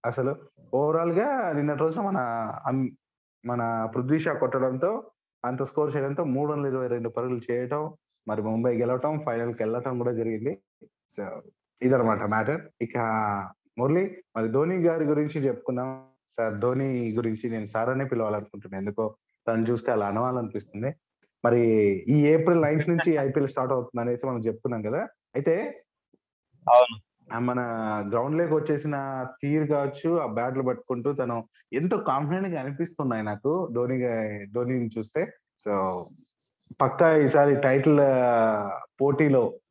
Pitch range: 115-150 Hz